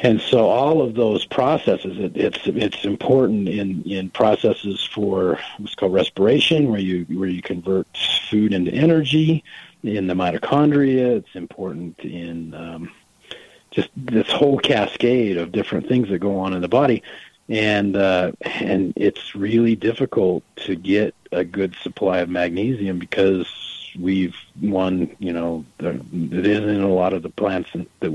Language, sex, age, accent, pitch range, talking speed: English, male, 50-69, American, 90-110 Hz, 150 wpm